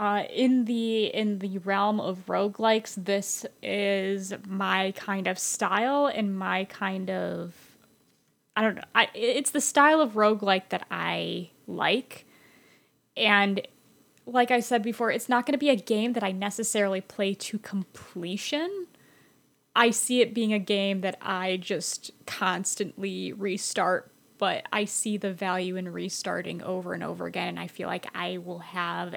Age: 10-29